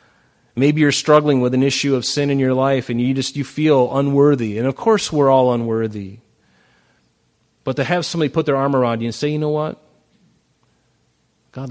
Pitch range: 110-140 Hz